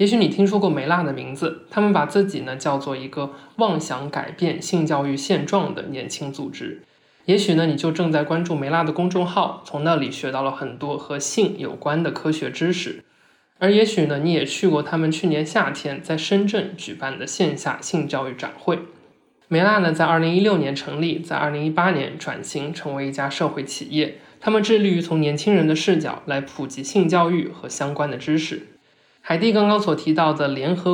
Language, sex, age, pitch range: Chinese, male, 20-39, 145-180 Hz